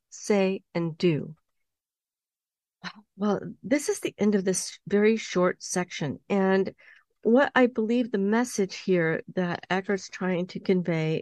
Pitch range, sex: 190-250 Hz, female